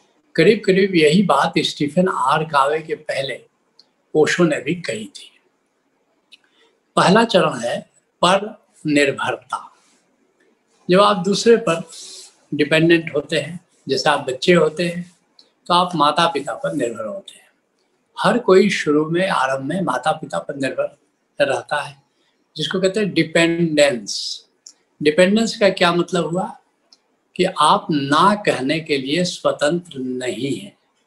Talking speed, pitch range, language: 130 wpm, 150-190 Hz, Hindi